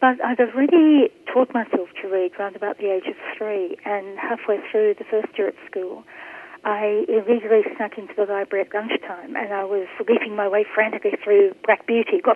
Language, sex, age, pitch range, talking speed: English, female, 40-59, 205-330 Hz, 195 wpm